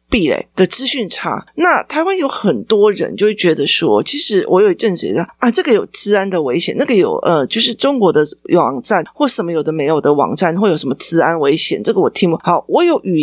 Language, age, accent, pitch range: Chinese, 30-49, native, 175-280 Hz